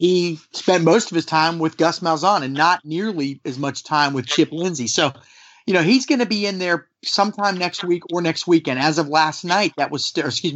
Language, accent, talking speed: English, American, 225 wpm